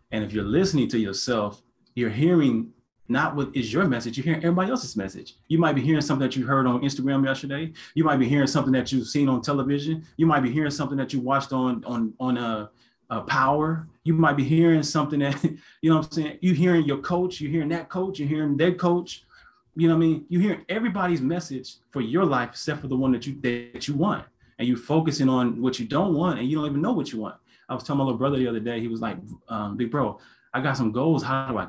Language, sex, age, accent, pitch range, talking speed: English, male, 30-49, American, 120-155 Hz, 255 wpm